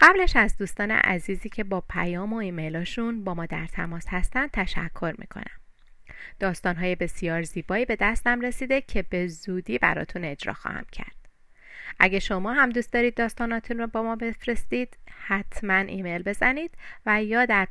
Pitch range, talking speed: 175-240 Hz, 155 wpm